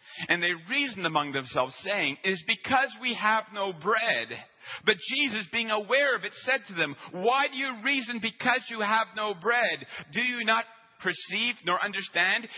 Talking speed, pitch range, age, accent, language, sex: 175 wpm, 170-225 Hz, 50-69, American, English, male